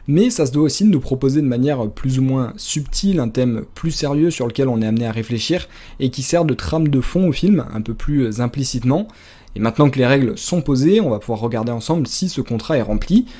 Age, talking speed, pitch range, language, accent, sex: 20-39, 240 wpm, 120-150 Hz, French, French, male